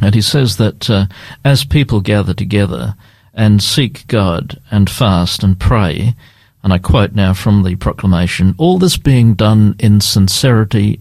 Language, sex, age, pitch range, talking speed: English, male, 50-69, 100-120 Hz, 160 wpm